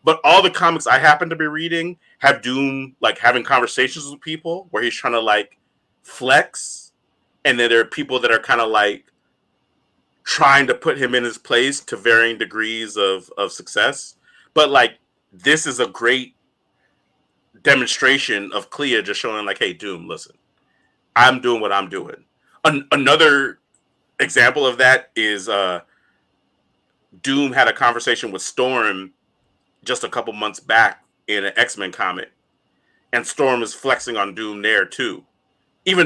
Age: 30-49